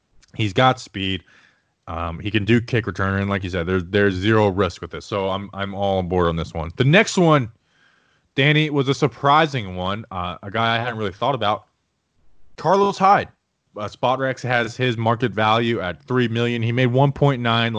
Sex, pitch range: male, 100-130 Hz